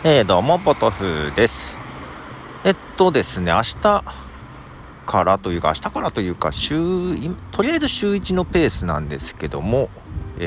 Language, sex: Japanese, male